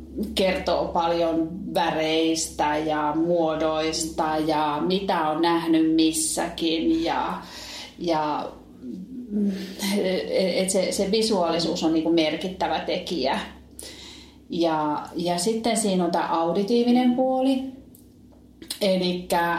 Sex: female